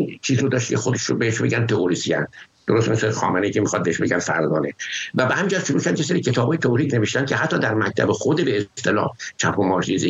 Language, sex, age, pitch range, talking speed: English, male, 60-79, 105-140 Hz, 220 wpm